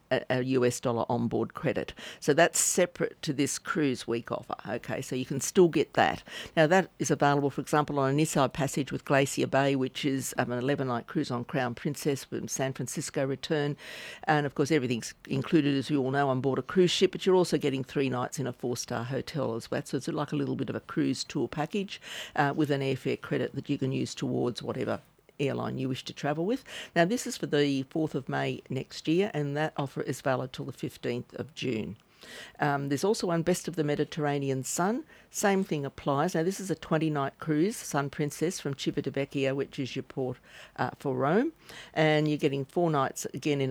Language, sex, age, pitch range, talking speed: English, female, 50-69, 135-155 Hz, 215 wpm